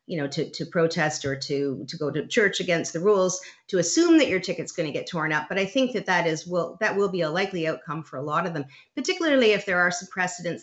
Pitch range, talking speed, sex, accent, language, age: 150-190 Hz, 270 wpm, female, American, English, 40-59